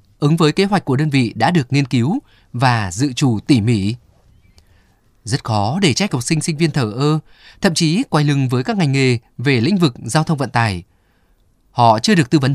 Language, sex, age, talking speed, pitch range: Vietnamese, male, 20-39, 220 wpm, 115-160 Hz